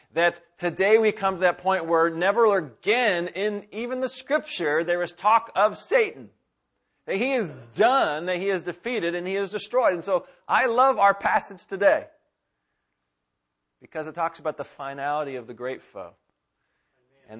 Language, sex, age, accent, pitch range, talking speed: English, male, 40-59, American, 120-165 Hz, 170 wpm